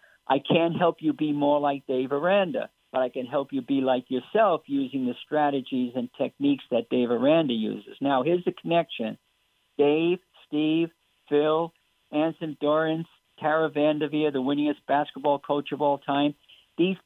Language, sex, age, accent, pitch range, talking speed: English, male, 50-69, American, 145-175 Hz, 160 wpm